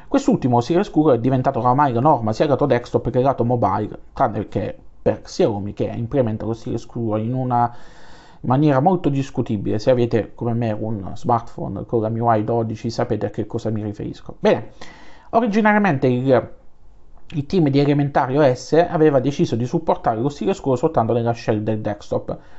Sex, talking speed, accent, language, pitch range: male, 170 wpm, native, Italian, 115-150 Hz